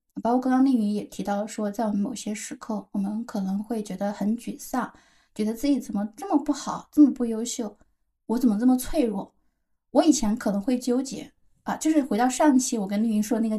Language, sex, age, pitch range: Chinese, female, 10-29, 210-255 Hz